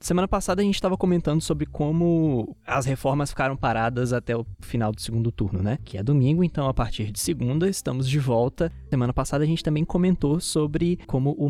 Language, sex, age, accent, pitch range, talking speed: Portuguese, male, 20-39, Brazilian, 110-155 Hz, 205 wpm